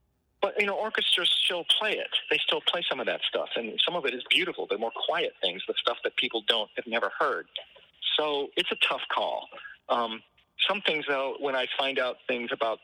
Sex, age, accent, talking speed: male, 40-59, American, 220 wpm